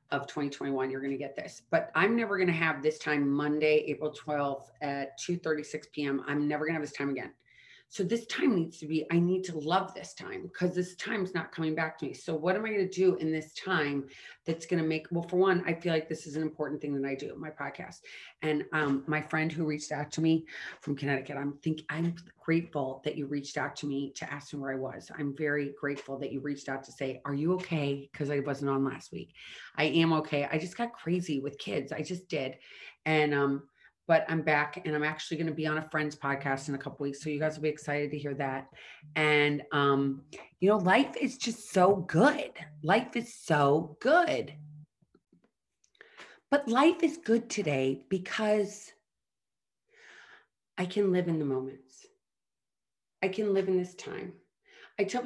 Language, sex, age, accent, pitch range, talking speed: English, female, 30-49, American, 145-180 Hz, 215 wpm